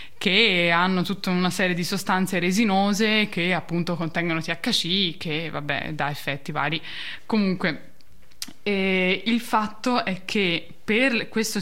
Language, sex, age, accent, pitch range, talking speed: Italian, female, 10-29, native, 170-210 Hz, 130 wpm